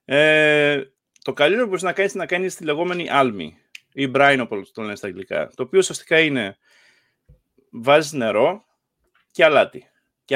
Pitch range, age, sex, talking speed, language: 125-165 Hz, 30-49, male, 110 wpm, Greek